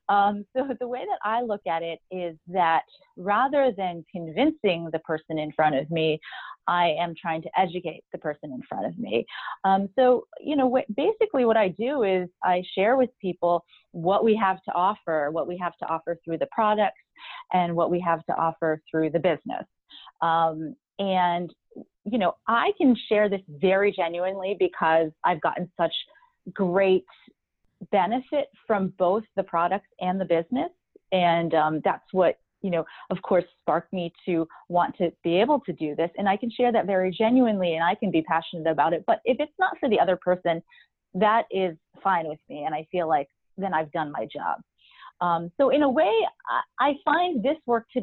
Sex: female